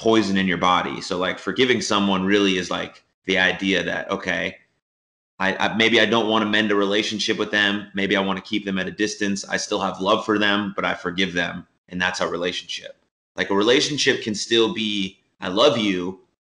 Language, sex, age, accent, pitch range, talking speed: English, male, 30-49, American, 95-110 Hz, 215 wpm